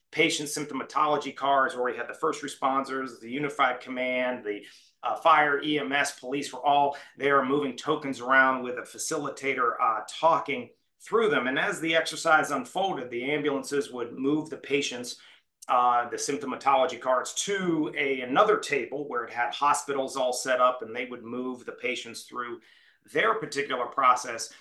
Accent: American